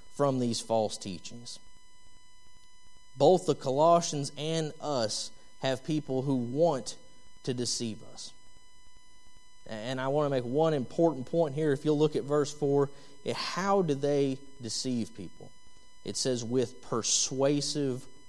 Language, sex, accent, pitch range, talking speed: English, male, American, 110-140 Hz, 130 wpm